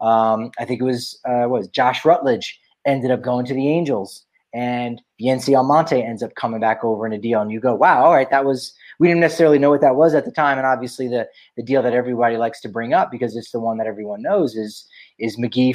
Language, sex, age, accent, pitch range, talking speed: English, male, 30-49, American, 120-145 Hz, 260 wpm